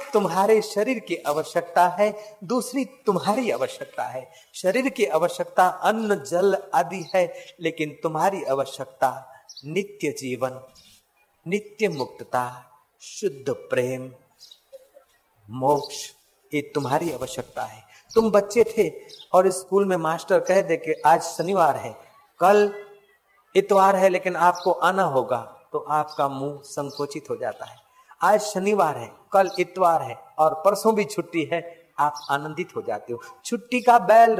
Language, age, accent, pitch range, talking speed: Hindi, 50-69, native, 160-215 Hz, 135 wpm